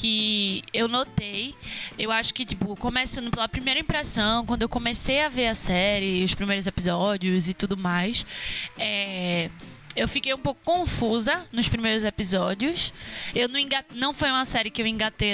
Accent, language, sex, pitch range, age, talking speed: Brazilian, Portuguese, female, 210-285 Hz, 20-39, 170 wpm